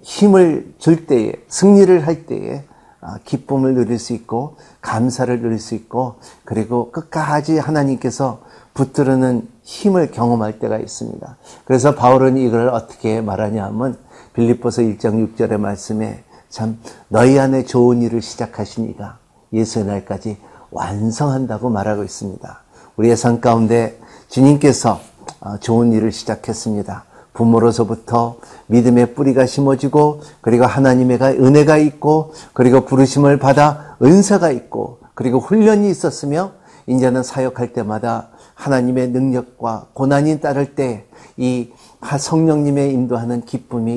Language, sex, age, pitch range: Korean, male, 50-69, 110-135 Hz